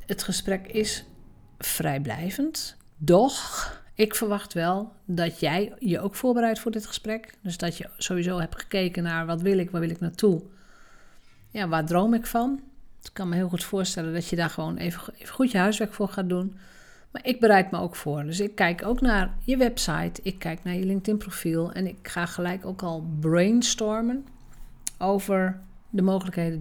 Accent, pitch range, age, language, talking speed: Dutch, 165-200 Hz, 50-69, Dutch, 185 wpm